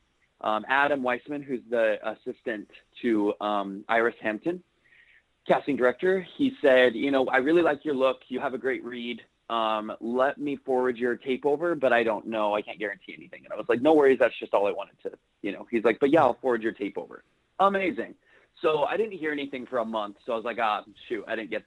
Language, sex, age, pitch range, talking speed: English, male, 30-49, 110-145 Hz, 225 wpm